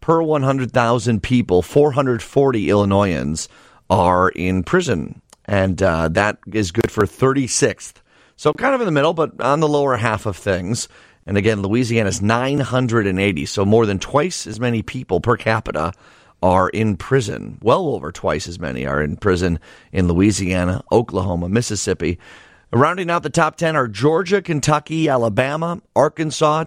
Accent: American